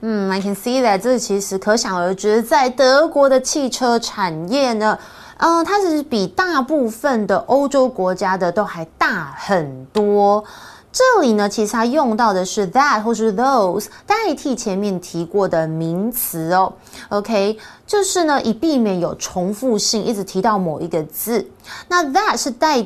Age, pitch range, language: 20-39, 190-270 Hz, Chinese